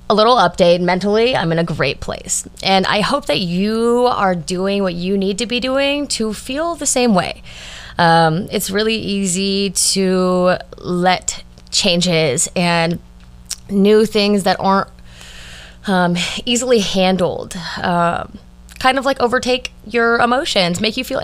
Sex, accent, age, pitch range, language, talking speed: female, American, 20-39, 175-230 Hz, English, 145 wpm